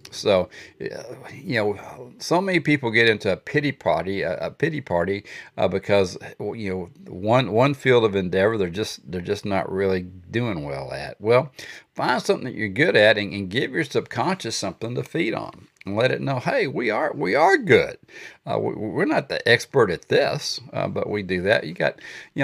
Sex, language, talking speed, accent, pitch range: male, English, 200 wpm, American, 90-115 Hz